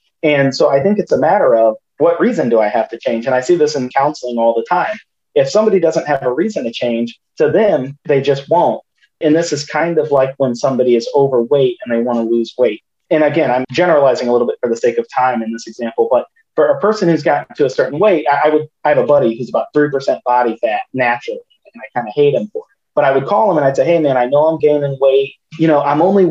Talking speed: 265 wpm